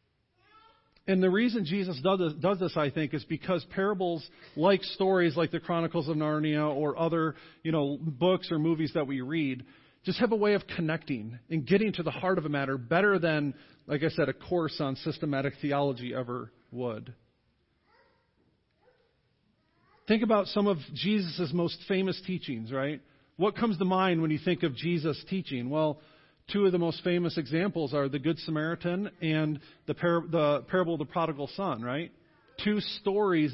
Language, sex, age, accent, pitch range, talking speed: English, male, 40-59, American, 150-185 Hz, 175 wpm